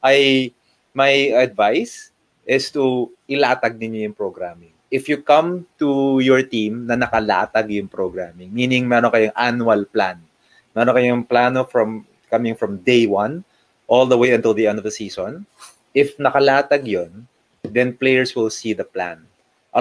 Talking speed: 155 wpm